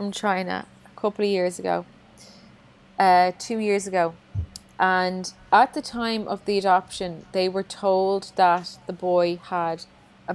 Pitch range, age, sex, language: 170-200 Hz, 30-49, female, English